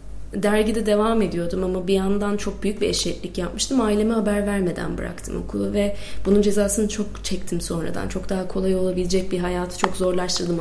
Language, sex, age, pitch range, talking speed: Turkish, female, 30-49, 185-225 Hz, 170 wpm